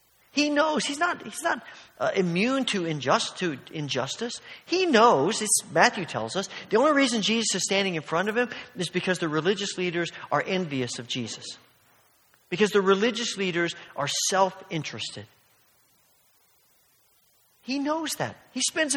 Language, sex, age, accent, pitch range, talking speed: English, male, 40-59, American, 160-220 Hz, 140 wpm